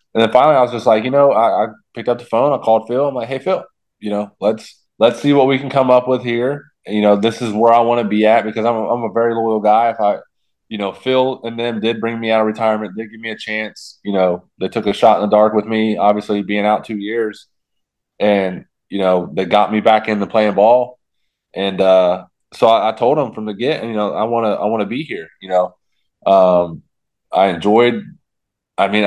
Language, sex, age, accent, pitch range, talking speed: English, male, 20-39, American, 100-115 Hz, 255 wpm